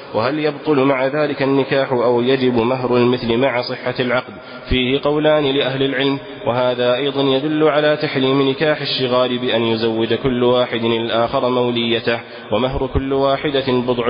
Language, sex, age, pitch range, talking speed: Arabic, male, 20-39, 120-135 Hz, 140 wpm